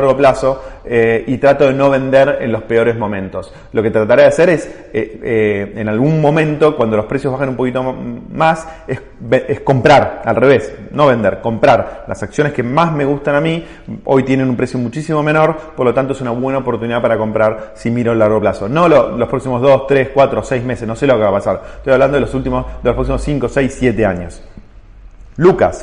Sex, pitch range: male, 115-150 Hz